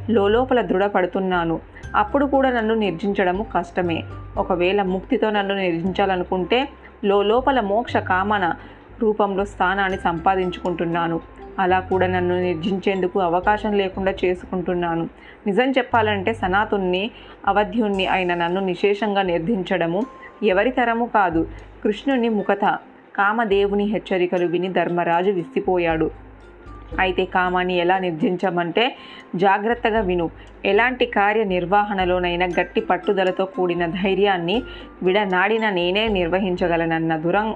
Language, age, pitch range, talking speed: Telugu, 20-39, 175-205 Hz, 90 wpm